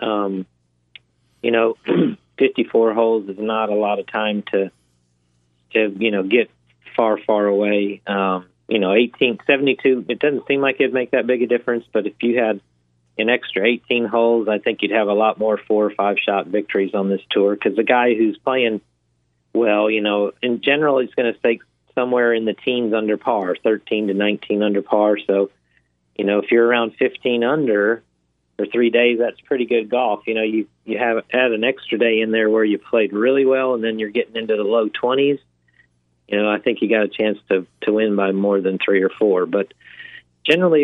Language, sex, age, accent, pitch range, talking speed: English, male, 40-59, American, 100-120 Hz, 205 wpm